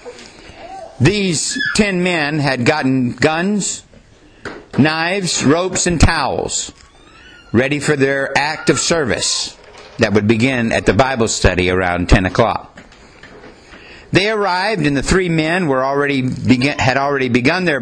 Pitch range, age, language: 125-175 Hz, 60-79, English